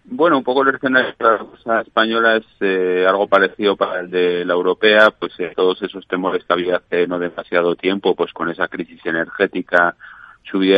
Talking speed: 195 wpm